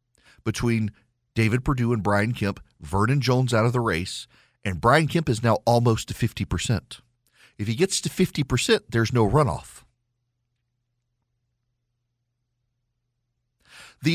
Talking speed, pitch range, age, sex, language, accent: 125 wpm, 110-125 Hz, 40-59, male, English, American